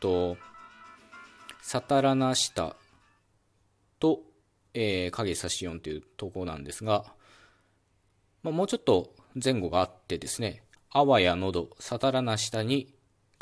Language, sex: Japanese, male